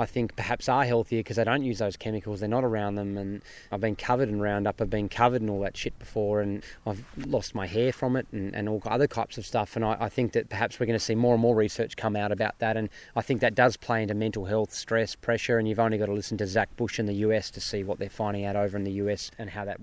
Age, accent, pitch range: 20-39, Australian, 105-125 Hz